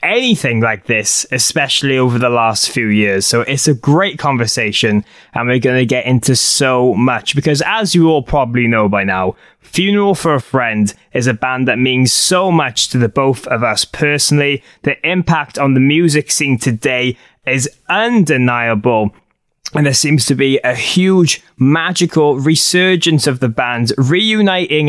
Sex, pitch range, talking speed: male, 125-160 Hz, 165 wpm